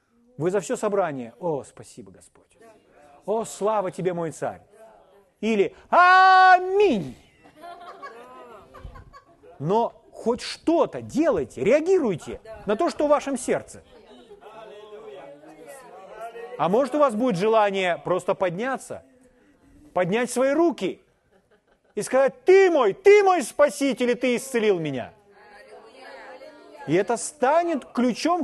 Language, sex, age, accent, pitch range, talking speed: Ukrainian, male, 30-49, native, 205-295 Hz, 110 wpm